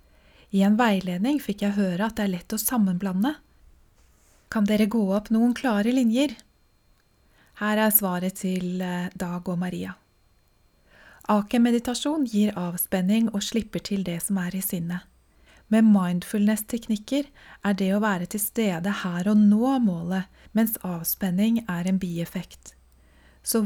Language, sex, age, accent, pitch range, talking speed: English, female, 20-39, Swedish, 180-220 Hz, 155 wpm